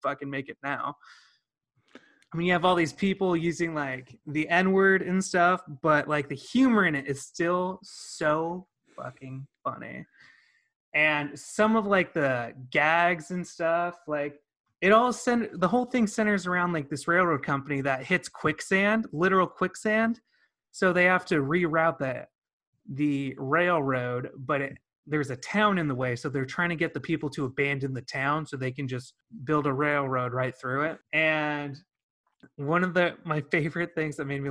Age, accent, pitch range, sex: 30-49, American, 145-185 Hz, male